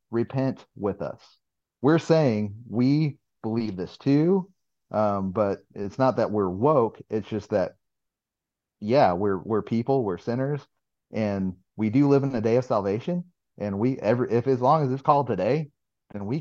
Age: 40-59